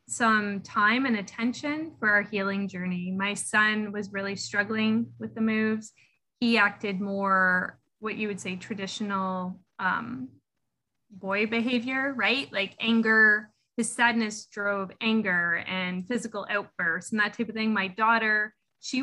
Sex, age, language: female, 20-39, English